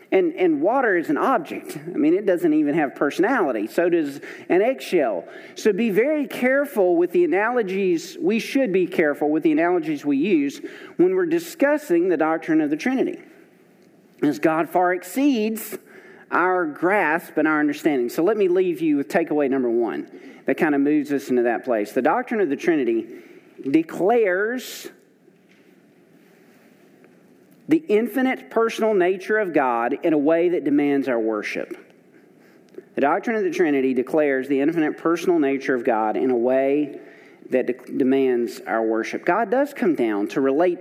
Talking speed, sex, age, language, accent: 165 wpm, male, 40-59, English, American